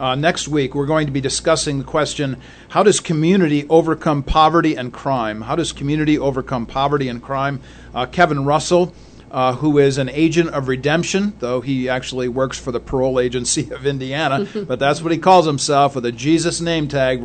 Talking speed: 190 wpm